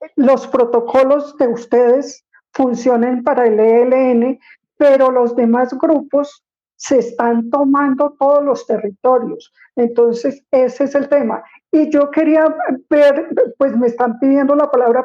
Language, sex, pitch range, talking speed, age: Spanish, female, 245-290 Hz, 130 wpm, 50-69